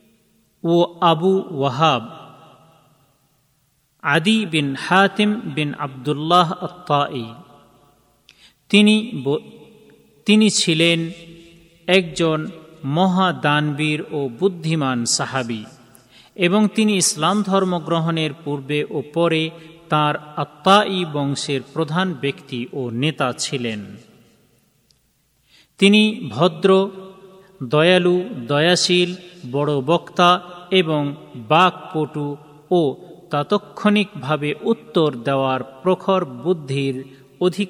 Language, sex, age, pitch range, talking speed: Bengali, male, 40-59, 140-190 Hz, 60 wpm